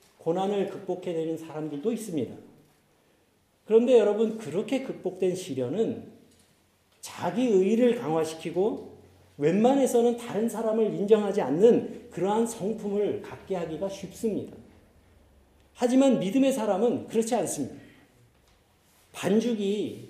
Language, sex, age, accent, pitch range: Korean, male, 50-69, native, 195-255 Hz